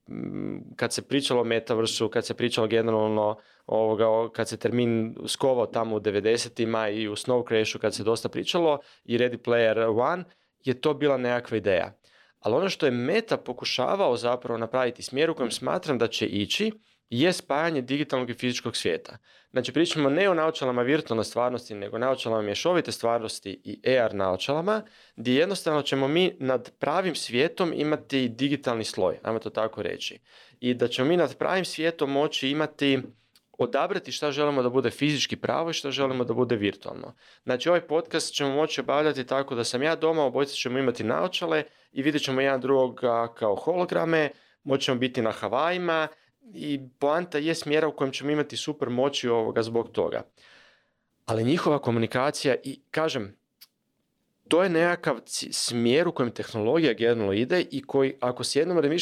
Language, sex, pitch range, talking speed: Croatian, male, 115-150 Hz, 165 wpm